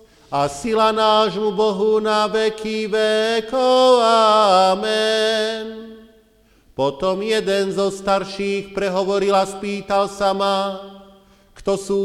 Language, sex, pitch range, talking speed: Slovak, male, 195-220 Hz, 95 wpm